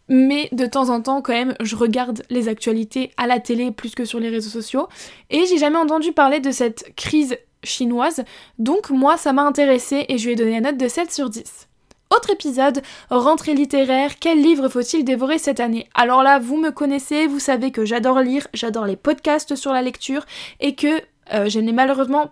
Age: 10-29